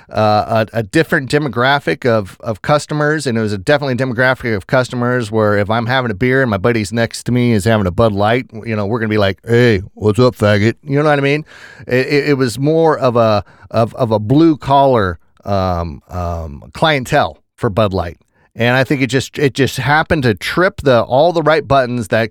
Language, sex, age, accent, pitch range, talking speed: English, male, 30-49, American, 110-145 Hz, 220 wpm